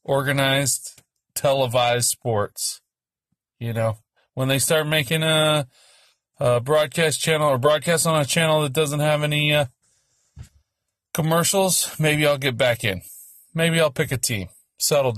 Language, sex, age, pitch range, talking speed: English, male, 30-49, 120-155 Hz, 140 wpm